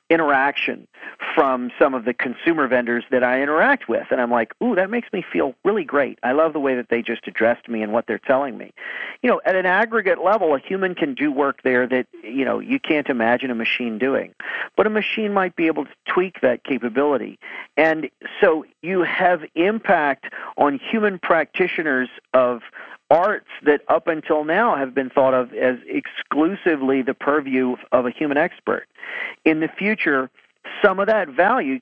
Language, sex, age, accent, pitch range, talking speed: English, male, 50-69, American, 125-170 Hz, 185 wpm